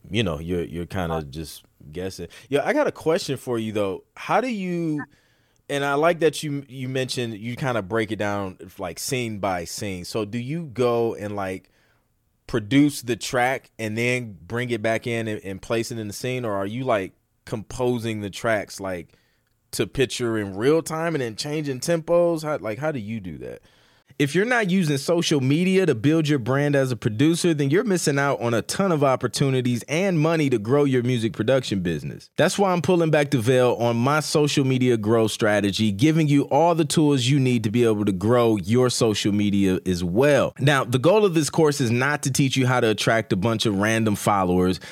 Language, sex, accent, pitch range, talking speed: English, male, American, 110-145 Hz, 215 wpm